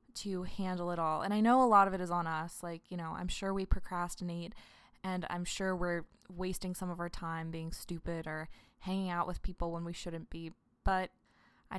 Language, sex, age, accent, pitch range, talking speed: English, female, 20-39, American, 175-225 Hz, 220 wpm